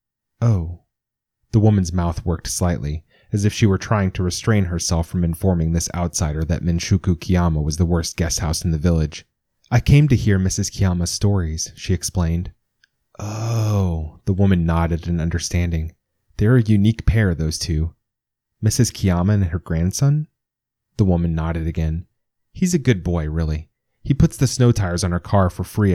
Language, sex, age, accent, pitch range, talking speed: English, male, 30-49, American, 85-105 Hz, 170 wpm